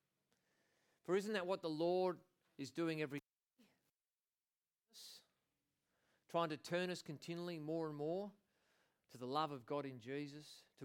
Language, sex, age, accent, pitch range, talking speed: English, male, 40-59, Australian, 140-180 Hz, 145 wpm